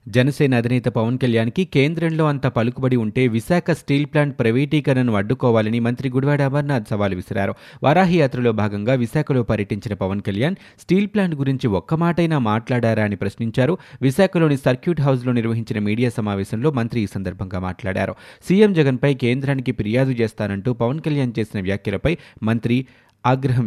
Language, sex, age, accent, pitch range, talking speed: Telugu, male, 20-39, native, 110-140 Hz, 135 wpm